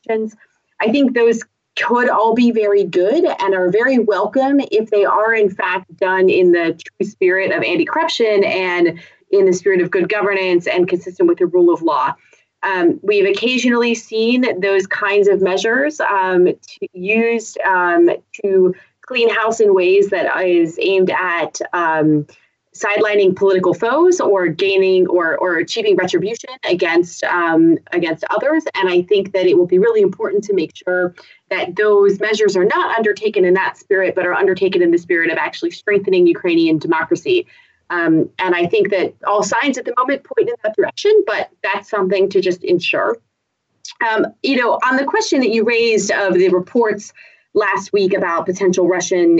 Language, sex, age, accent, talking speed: English, female, 30-49, American, 170 wpm